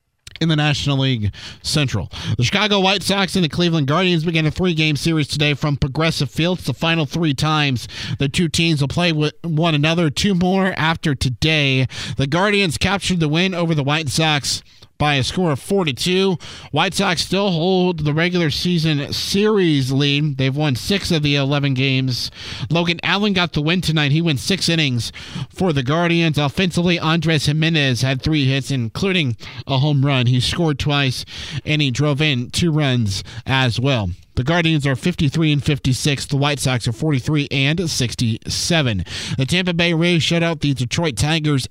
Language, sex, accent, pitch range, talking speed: English, male, American, 135-170 Hz, 175 wpm